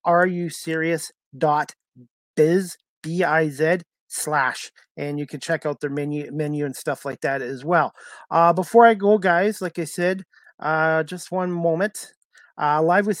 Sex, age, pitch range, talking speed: male, 30-49, 150-175 Hz, 175 wpm